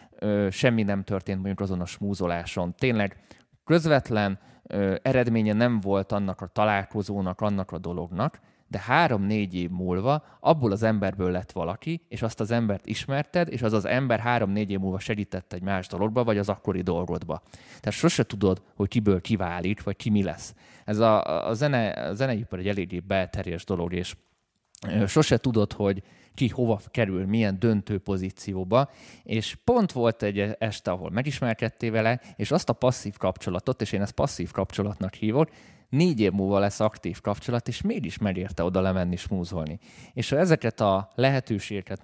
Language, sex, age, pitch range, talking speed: Hungarian, male, 20-39, 95-120 Hz, 165 wpm